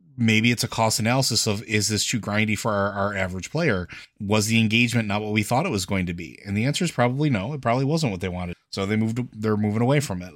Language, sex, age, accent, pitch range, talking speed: English, male, 30-49, American, 95-110 Hz, 270 wpm